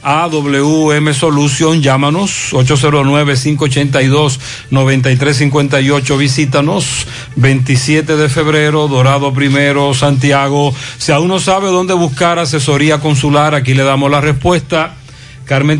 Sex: male